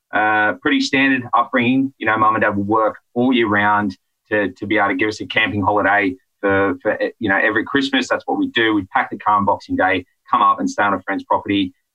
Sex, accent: male, Australian